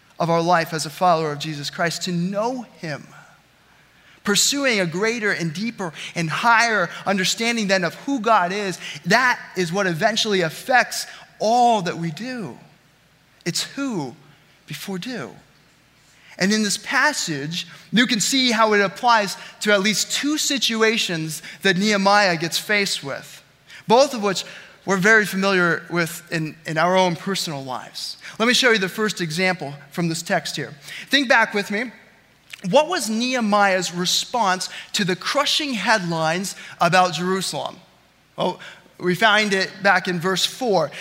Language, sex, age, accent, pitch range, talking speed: English, male, 20-39, American, 170-220 Hz, 150 wpm